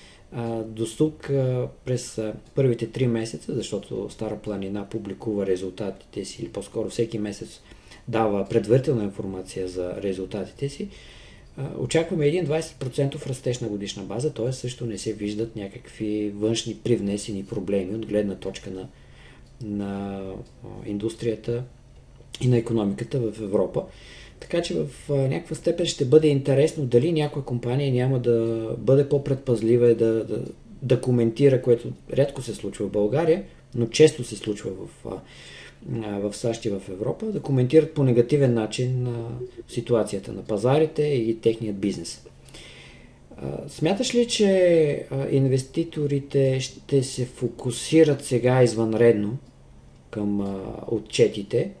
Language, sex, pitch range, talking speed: Bulgarian, male, 105-135 Hz, 125 wpm